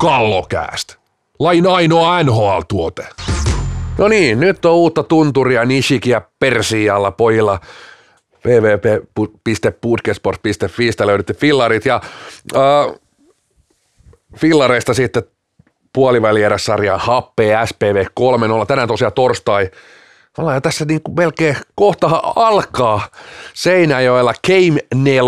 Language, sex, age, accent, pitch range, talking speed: Finnish, male, 30-49, native, 110-145 Hz, 90 wpm